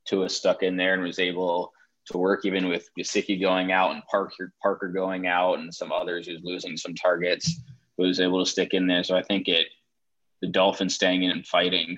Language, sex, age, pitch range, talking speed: English, male, 20-39, 85-95 Hz, 215 wpm